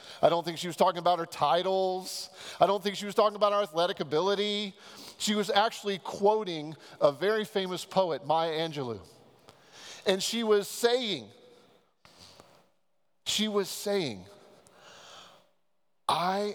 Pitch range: 190-245 Hz